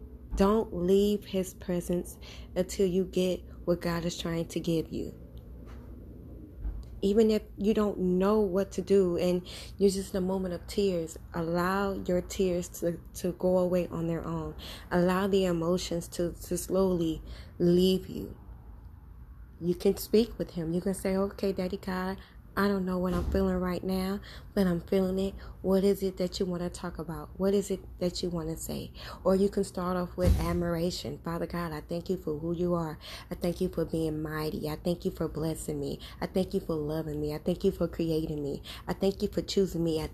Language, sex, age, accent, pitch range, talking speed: English, female, 20-39, American, 165-185 Hz, 200 wpm